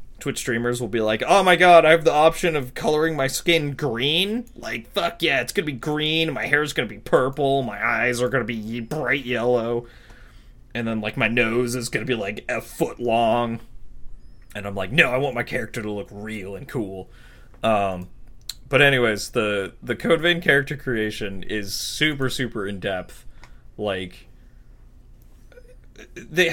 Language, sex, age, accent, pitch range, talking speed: English, male, 20-39, American, 110-150 Hz, 170 wpm